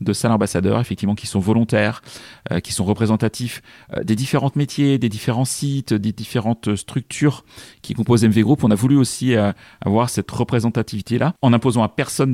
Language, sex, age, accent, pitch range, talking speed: French, male, 40-59, French, 105-130 Hz, 180 wpm